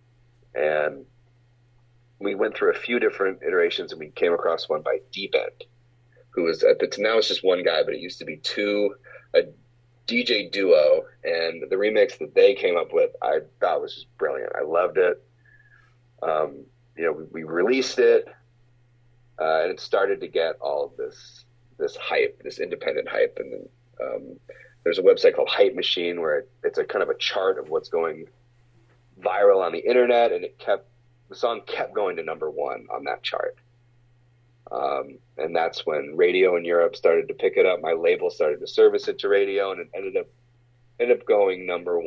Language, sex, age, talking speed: English, male, 30-49, 195 wpm